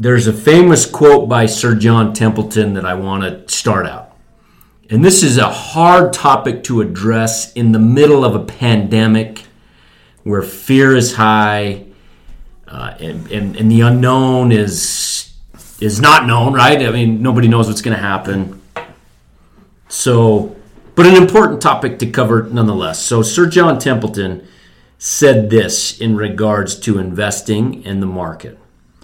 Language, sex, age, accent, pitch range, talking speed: English, male, 40-59, American, 105-135 Hz, 150 wpm